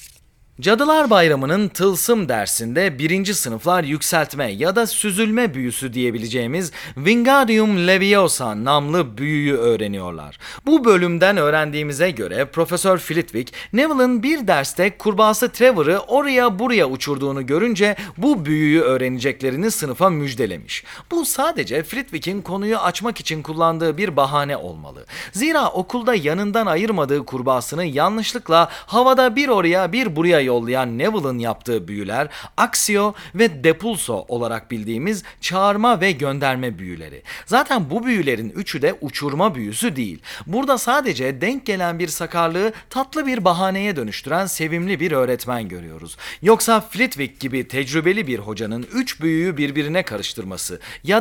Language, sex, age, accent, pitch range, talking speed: Turkish, male, 40-59, native, 135-215 Hz, 120 wpm